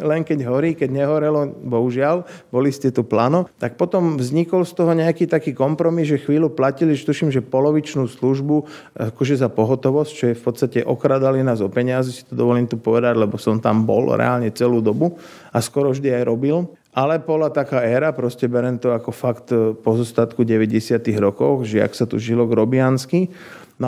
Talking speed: 180 wpm